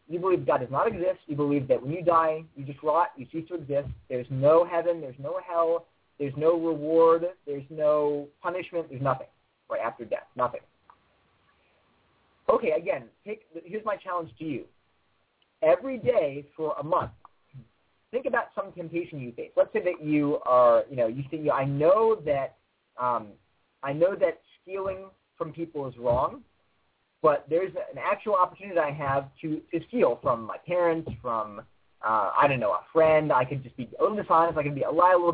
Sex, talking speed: male, 185 wpm